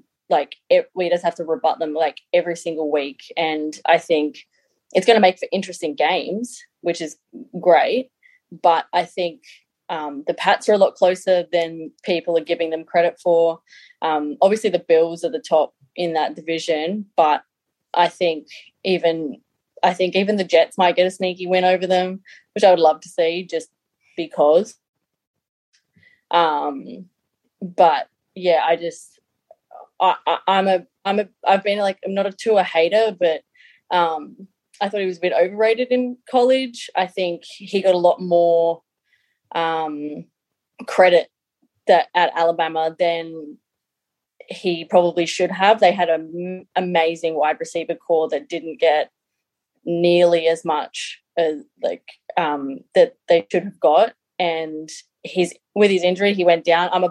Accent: Australian